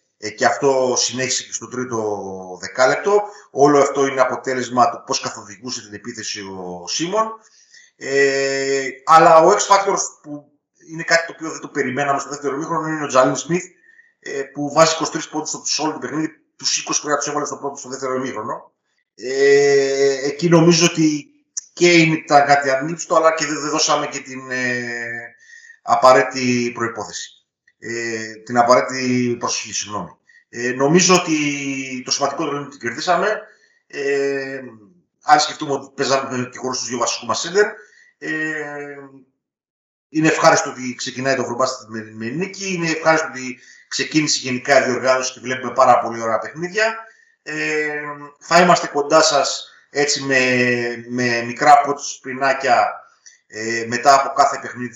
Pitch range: 125-160 Hz